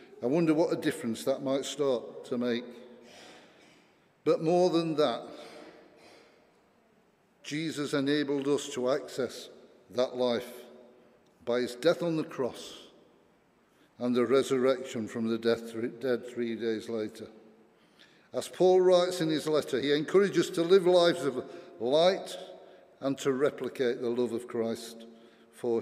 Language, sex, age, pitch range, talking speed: English, male, 50-69, 115-165 Hz, 135 wpm